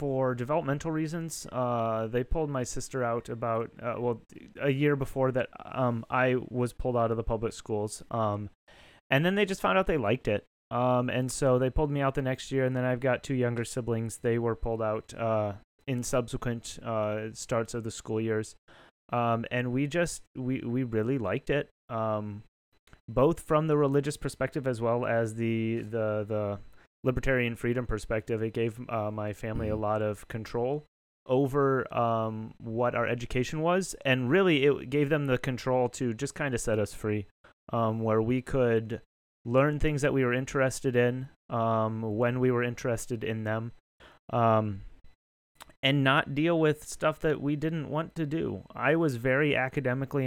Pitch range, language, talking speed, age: 110-135 Hz, English, 180 wpm, 30-49